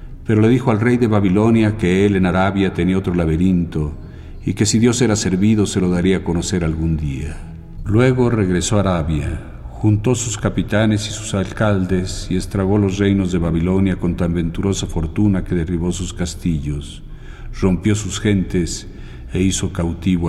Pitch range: 85-100 Hz